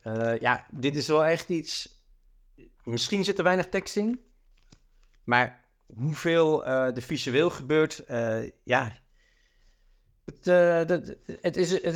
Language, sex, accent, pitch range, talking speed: Dutch, male, Dutch, 120-160 Hz, 110 wpm